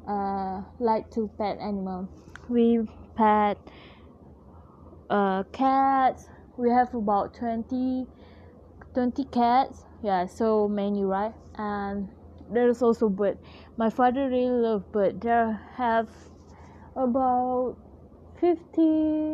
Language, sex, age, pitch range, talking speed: English, female, 20-39, 205-250 Hz, 100 wpm